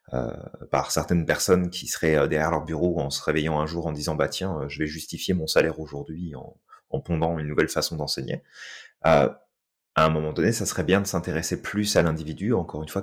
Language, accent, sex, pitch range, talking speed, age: French, French, male, 80-95 Hz, 225 wpm, 30-49